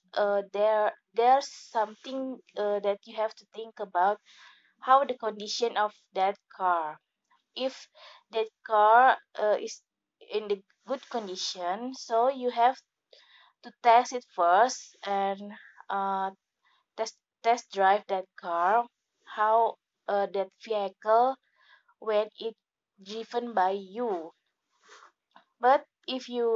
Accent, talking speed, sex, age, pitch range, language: native, 115 wpm, female, 20-39, 200-250 Hz, Indonesian